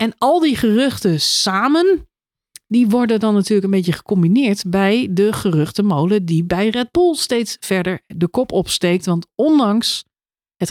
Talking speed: 150 wpm